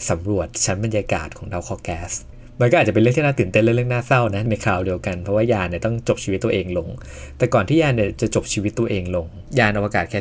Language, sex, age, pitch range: Thai, male, 20-39, 100-120 Hz